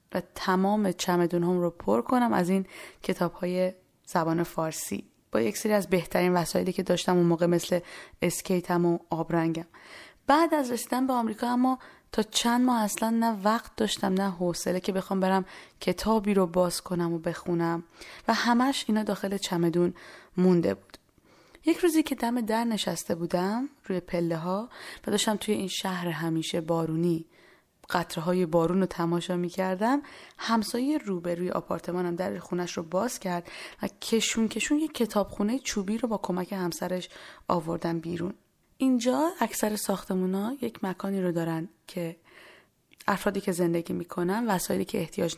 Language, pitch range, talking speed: Persian, 175-215 Hz, 155 wpm